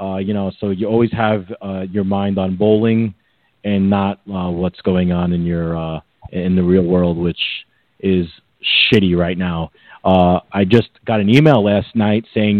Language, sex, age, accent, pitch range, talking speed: English, male, 30-49, American, 90-110 Hz, 185 wpm